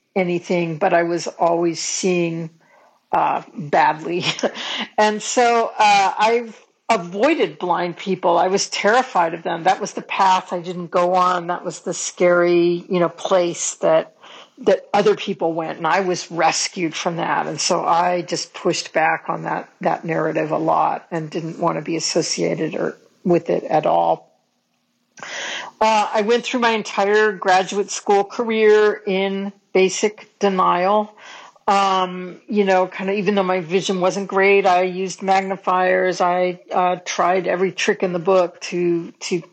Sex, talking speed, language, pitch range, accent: female, 160 wpm, English, 175-200 Hz, American